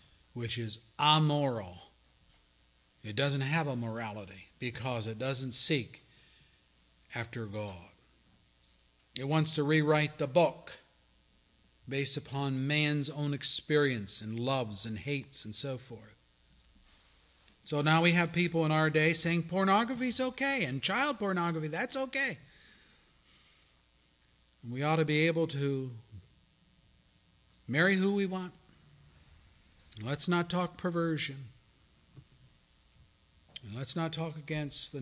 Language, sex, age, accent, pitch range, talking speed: English, male, 40-59, American, 105-150 Hz, 115 wpm